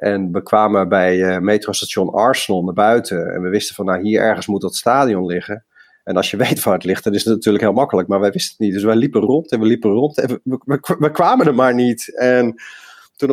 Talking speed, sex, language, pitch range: 255 wpm, male, Dutch, 100-115 Hz